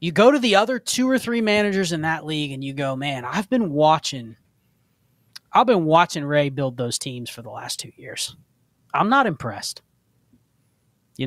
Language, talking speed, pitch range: English, 185 wpm, 135-190 Hz